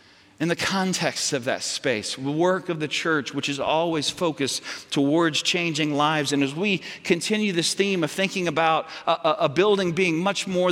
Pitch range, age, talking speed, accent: 170-215 Hz, 40-59, 190 wpm, American